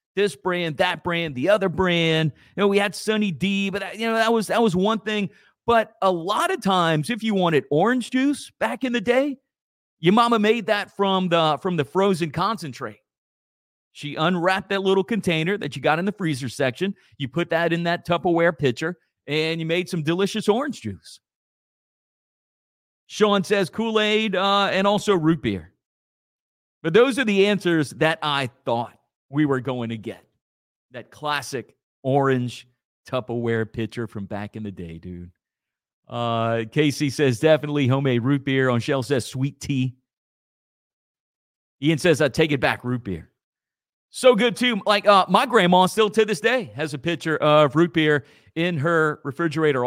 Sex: male